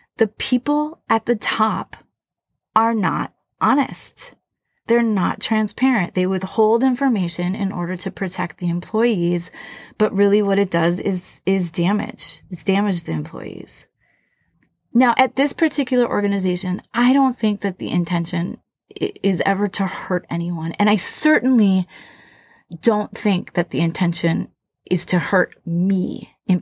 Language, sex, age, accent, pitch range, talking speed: English, female, 30-49, American, 175-220 Hz, 140 wpm